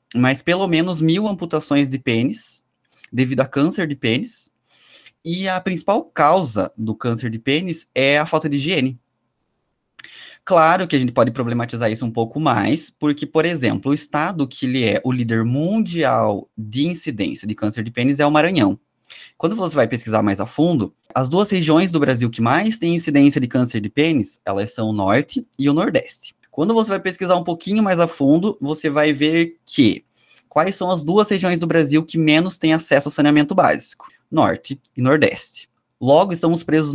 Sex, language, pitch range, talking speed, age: male, Portuguese, 120-165 Hz, 185 wpm, 20-39